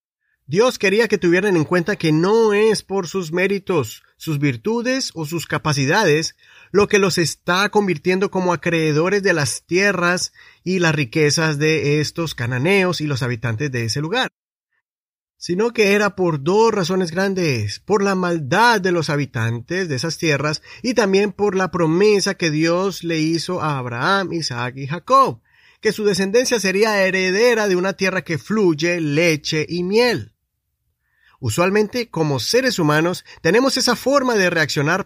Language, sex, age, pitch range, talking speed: Spanish, male, 30-49, 150-200 Hz, 155 wpm